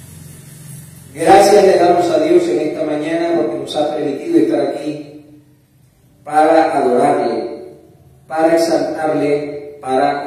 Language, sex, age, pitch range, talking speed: Spanish, male, 40-59, 145-175 Hz, 105 wpm